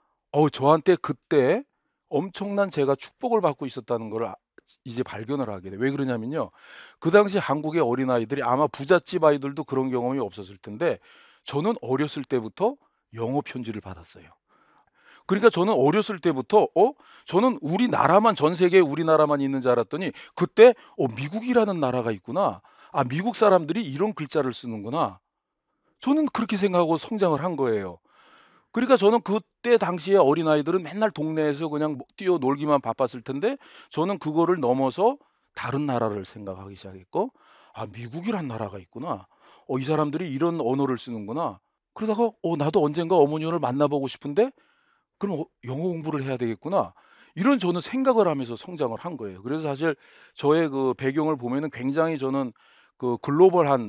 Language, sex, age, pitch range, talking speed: English, male, 40-59, 130-185 Hz, 135 wpm